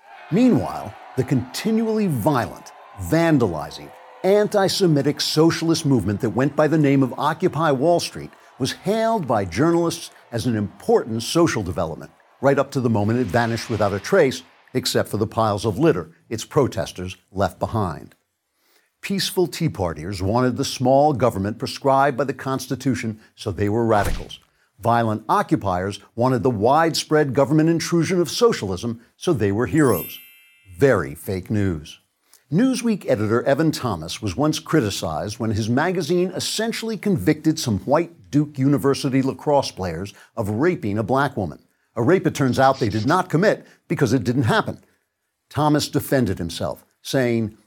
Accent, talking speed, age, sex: American, 145 wpm, 60-79, male